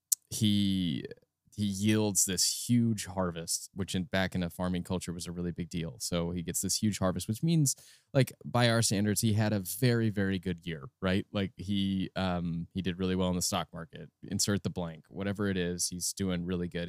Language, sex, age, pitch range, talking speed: English, male, 20-39, 95-115 Hz, 210 wpm